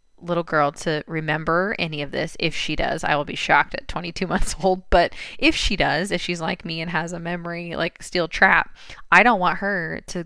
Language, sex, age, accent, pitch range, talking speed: English, female, 20-39, American, 160-185 Hz, 220 wpm